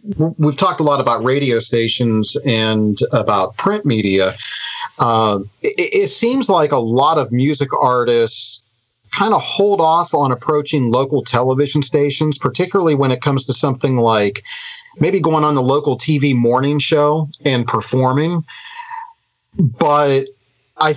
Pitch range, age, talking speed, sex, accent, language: 125-180 Hz, 40-59, 140 wpm, male, American, English